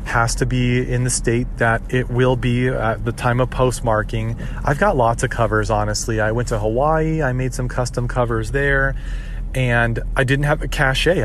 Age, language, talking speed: 30-49, English, 195 wpm